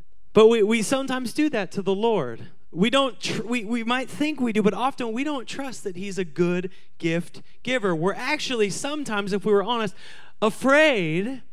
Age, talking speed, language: 30-49, 195 wpm, English